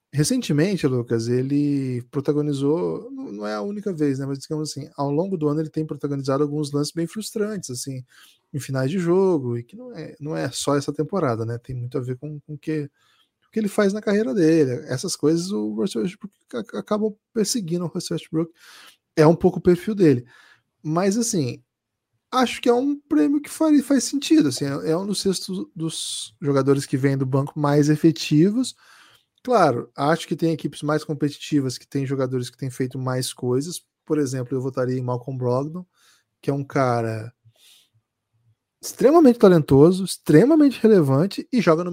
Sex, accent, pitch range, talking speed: male, Brazilian, 130-175 Hz, 180 wpm